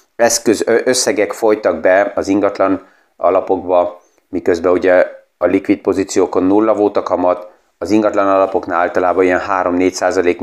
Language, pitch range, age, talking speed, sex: Hungarian, 95-110 Hz, 30-49, 115 wpm, male